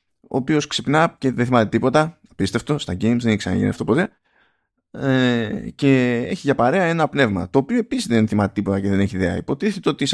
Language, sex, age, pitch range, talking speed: Greek, male, 20-39, 100-140 Hz, 200 wpm